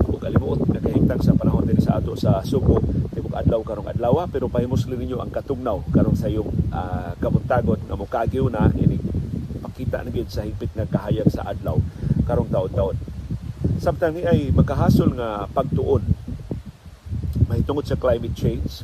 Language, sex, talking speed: Filipino, male, 145 wpm